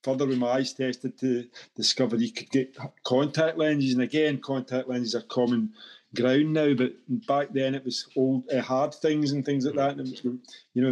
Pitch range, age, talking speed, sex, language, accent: 125-140 Hz, 40-59, 210 wpm, male, English, British